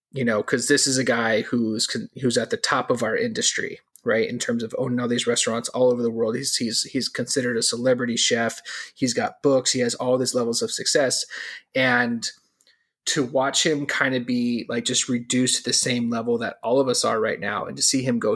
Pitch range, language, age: 120-160 Hz, English, 20-39